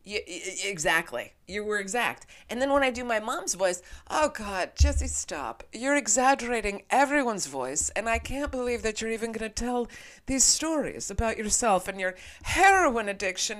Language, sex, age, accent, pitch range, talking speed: English, female, 30-49, American, 180-270 Hz, 170 wpm